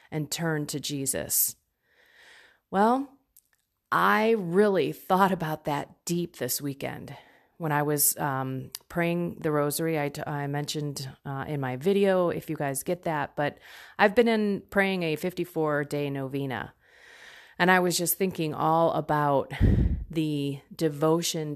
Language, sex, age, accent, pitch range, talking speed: English, female, 30-49, American, 150-195 Hz, 135 wpm